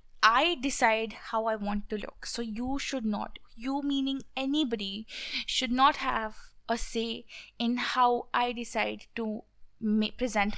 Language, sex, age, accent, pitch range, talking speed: English, female, 20-39, Indian, 210-245 Hz, 140 wpm